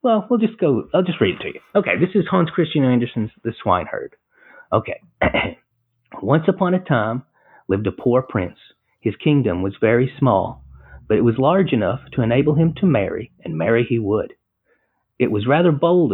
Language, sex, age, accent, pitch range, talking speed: English, male, 40-59, American, 110-145 Hz, 185 wpm